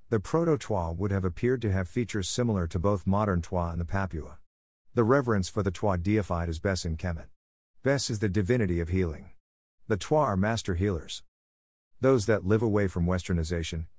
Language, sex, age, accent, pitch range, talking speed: English, male, 50-69, American, 85-110 Hz, 190 wpm